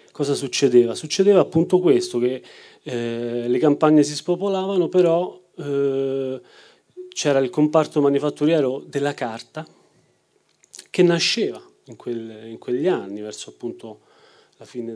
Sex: male